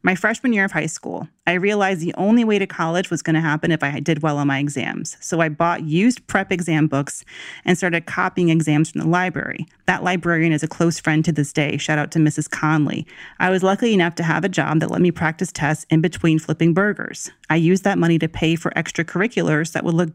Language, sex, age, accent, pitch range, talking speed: English, female, 30-49, American, 155-190 Hz, 240 wpm